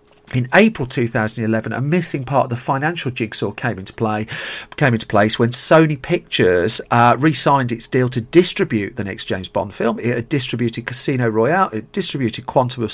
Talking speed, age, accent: 180 wpm, 40-59, British